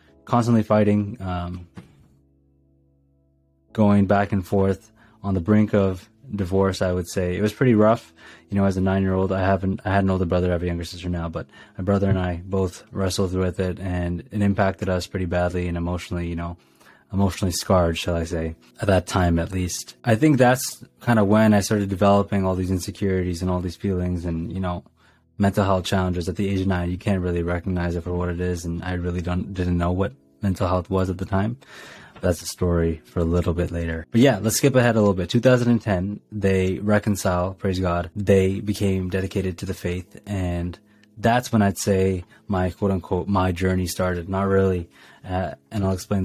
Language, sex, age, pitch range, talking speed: English, male, 20-39, 90-100 Hz, 205 wpm